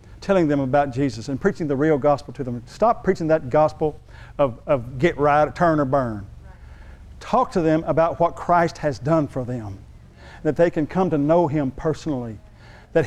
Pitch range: 120-170 Hz